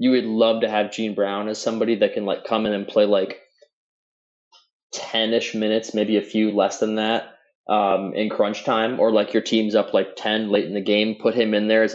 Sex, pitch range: male, 105-120 Hz